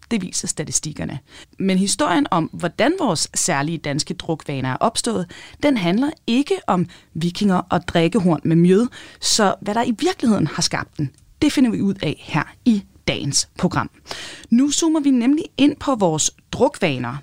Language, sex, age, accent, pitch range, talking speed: Danish, female, 30-49, native, 170-265 Hz, 165 wpm